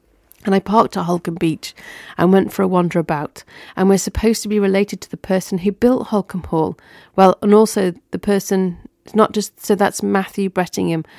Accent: British